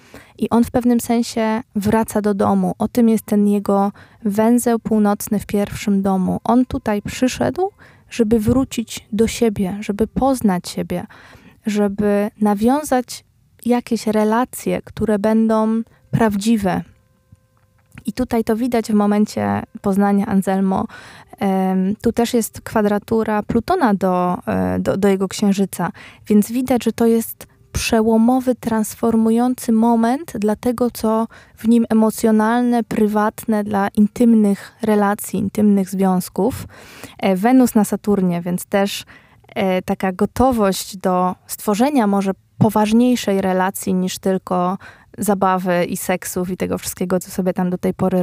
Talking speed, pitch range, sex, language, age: 125 wpm, 195-230 Hz, female, Polish, 20-39